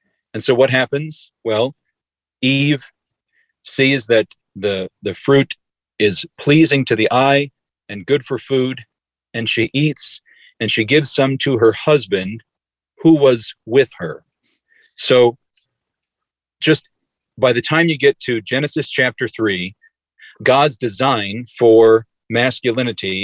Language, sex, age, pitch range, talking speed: English, male, 40-59, 115-140 Hz, 125 wpm